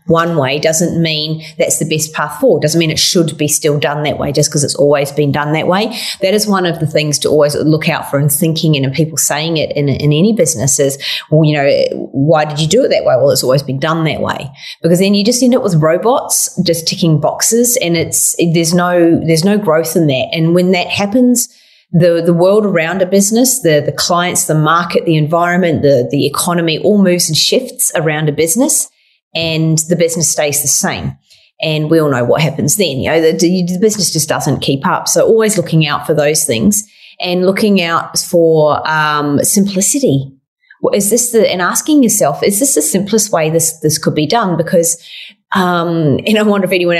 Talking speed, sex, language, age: 220 wpm, female, English, 30-49